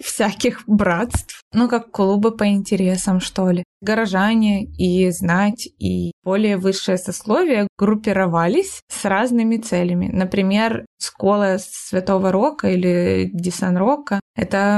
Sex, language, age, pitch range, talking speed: female, Ukrainian, 20-39, 180-210 Hz, 110 wpm